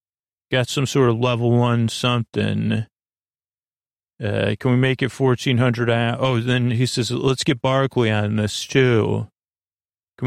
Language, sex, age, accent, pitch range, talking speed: English, male, 40-59, American, 115-135 Hz, 145 wpm